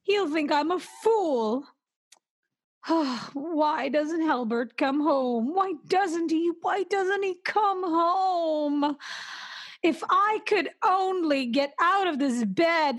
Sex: female